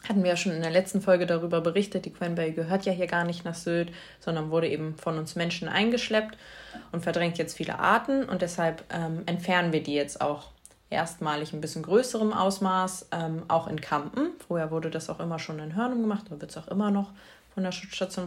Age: 20-39